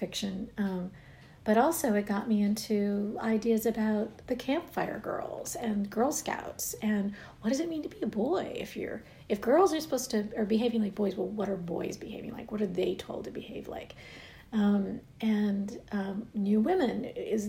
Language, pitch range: English, 200-230 Hz